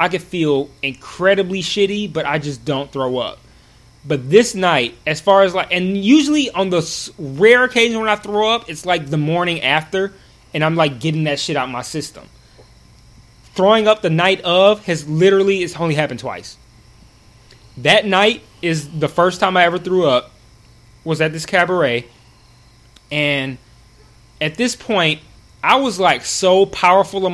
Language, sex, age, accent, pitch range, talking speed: English, male, 20-39, American, 140-185 Hz, 170 wpm